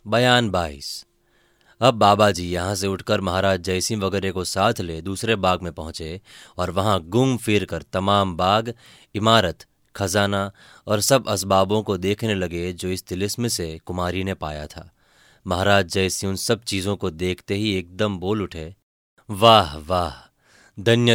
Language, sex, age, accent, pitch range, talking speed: Hindi, male, 30-49, native, 95-110 Hz, 155 wpm